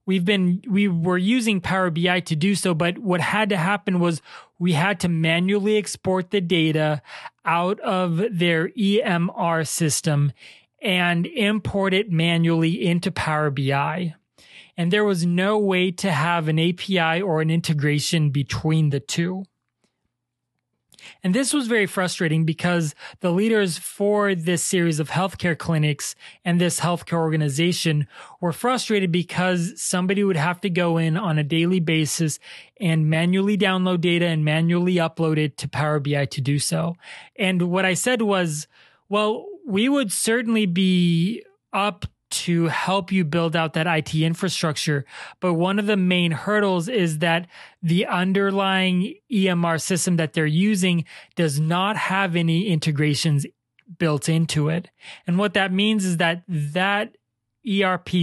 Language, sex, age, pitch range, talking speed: English, male, 30-49, 160-195 Hz, 150 wpm